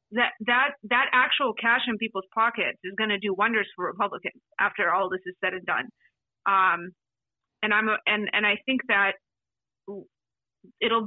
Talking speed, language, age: 175 wpm, English, 30-49